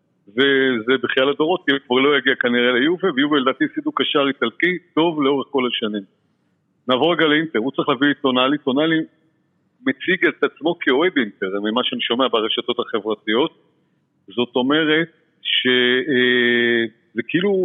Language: Hebrew